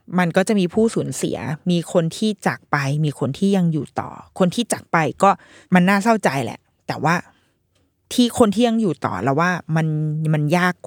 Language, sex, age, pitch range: Thai, female, 20-39, 160-210 Hz